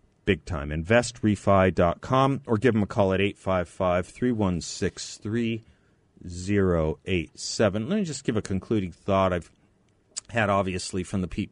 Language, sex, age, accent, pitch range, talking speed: English, male, 30-49, American, 95-115 Hz, 165 wpm